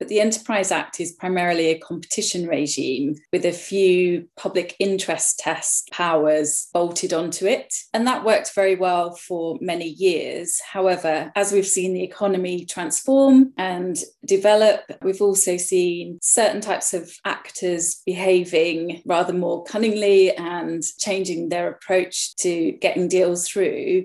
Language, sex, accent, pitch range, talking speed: English, female, British, 175-205 Hz, 135 wpm